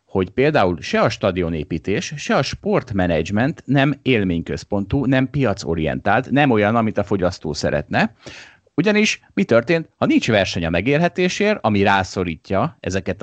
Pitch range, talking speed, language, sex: 90-135 Hz, 130 wpm, Hungarian, male